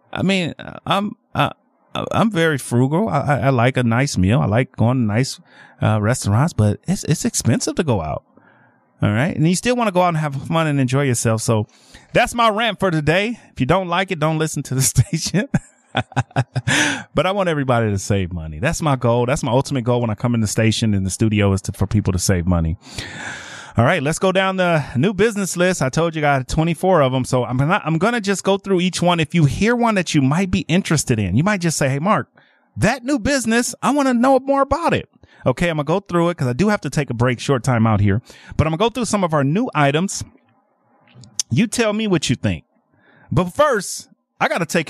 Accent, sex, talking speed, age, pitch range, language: American, male, 245 wpm, 30-49, 125-195 Hz, English